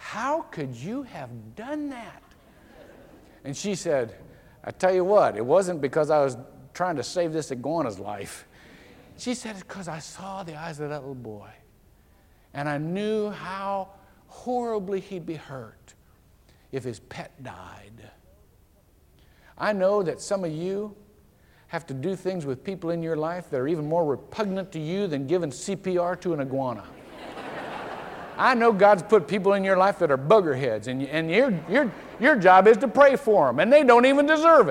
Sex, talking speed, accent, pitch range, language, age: male, 175 wpm, American, 135-210 Hz, English, 60-79